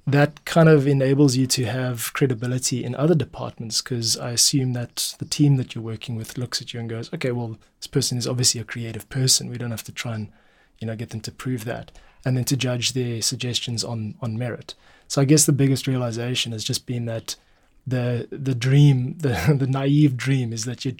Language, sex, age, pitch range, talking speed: English, male, 20-39, 115-135 Hz, 220 wpm